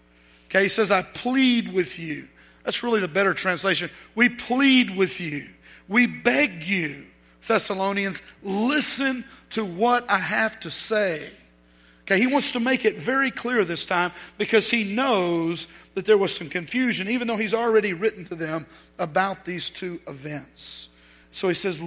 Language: English